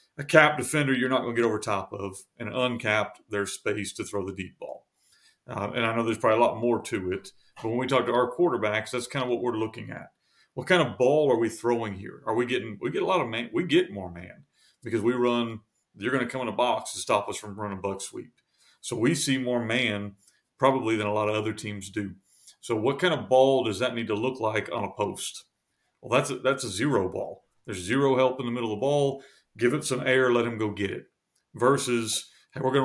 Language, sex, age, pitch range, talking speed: English, male, 40-59, 110-130 Hz, 250 wpm